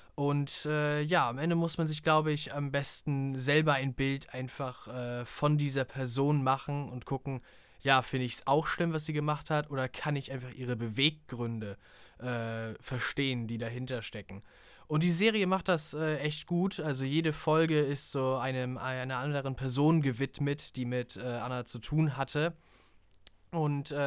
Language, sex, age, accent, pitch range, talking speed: German, male, 20-39, German, 125-150 Hz, 175 wpm